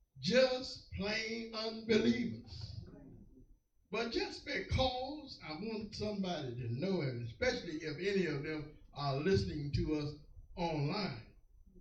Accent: American